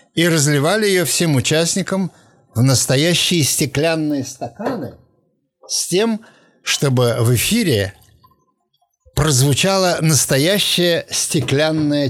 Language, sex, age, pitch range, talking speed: English, male, 60-79, 120-160 Hz, 85 wpm